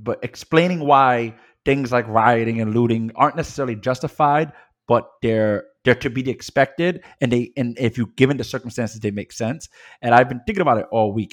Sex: male